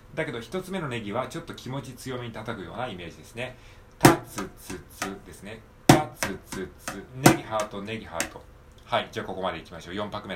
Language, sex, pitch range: Japanese, male, 100-130 Hz